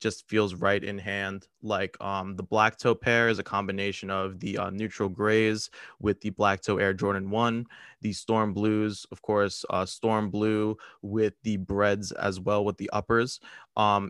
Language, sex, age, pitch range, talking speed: English, male, 20-39, 100-110 Hz, 185 wpm